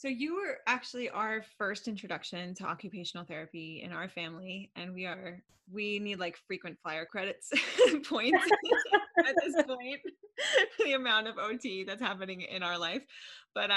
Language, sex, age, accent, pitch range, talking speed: English, female, 20-39, American, 165-225 Hz, 155 wpm